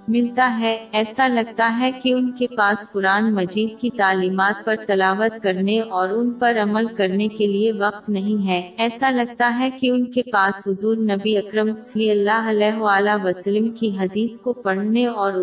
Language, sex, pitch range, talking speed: Urdu, female, 195-240 Hz, 180 wpm